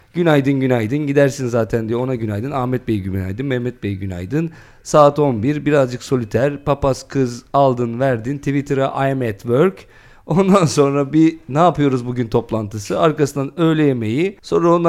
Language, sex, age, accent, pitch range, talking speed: Turkish, male, 40-59, native, 120-165 Hz, 150 wpm